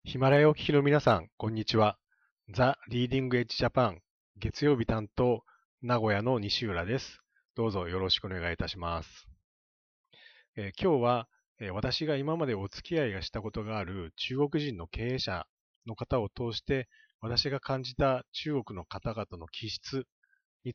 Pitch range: 95-135 Hz